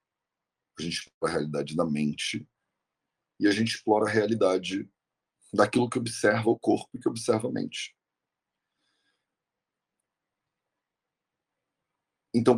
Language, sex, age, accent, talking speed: English, male, 40-59, Brazilian, 115 wpm